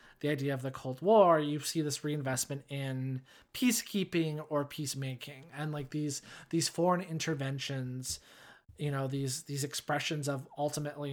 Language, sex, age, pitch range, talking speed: English, male, 20-39, 135-150 Hz, 145 wpm